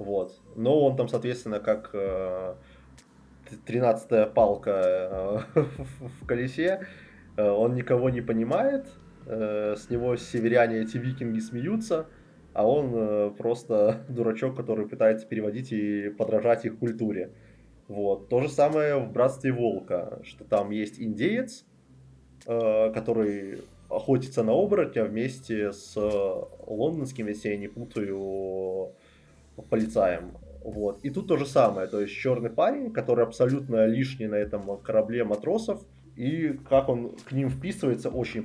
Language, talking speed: Russian, 130 wpm